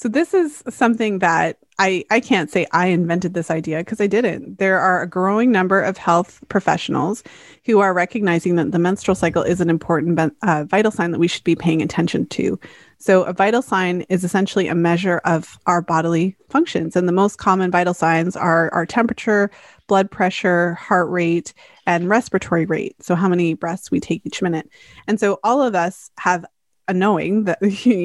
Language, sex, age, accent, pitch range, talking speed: English, female, 30-49, American, 170-210 Hz, 190 wpm